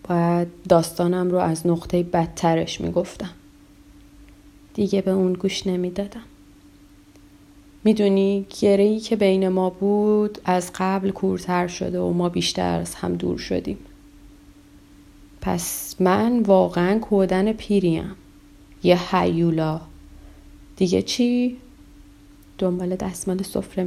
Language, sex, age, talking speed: Persian, female, 30-49, 105 wpm